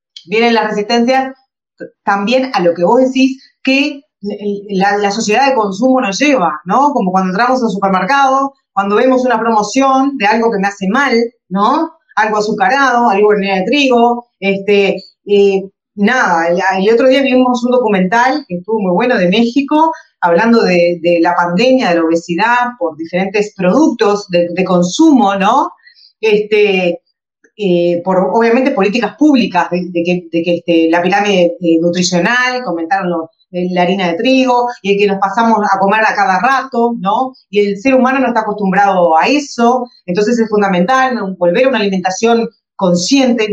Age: 30-49